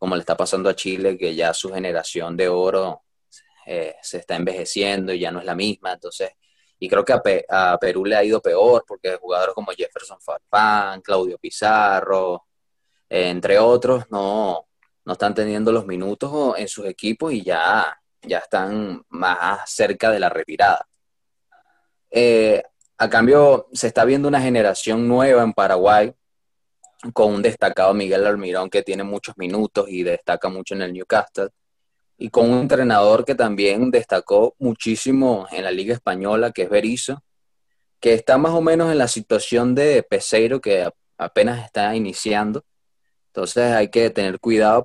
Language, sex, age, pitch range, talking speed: Spanish, male, 20-39, 100-135 Hz, 160 wpm